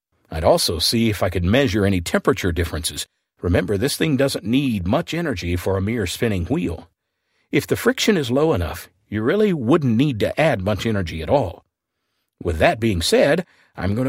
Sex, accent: male, American